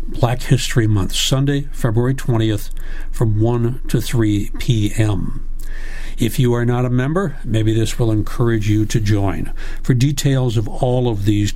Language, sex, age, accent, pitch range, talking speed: English, male, 60-79, American, 110-140 Hz, 155 wpm